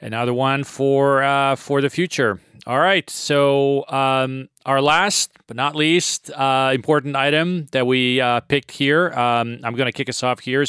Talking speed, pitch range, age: 175 wpm, 115-135 Hz, 30-49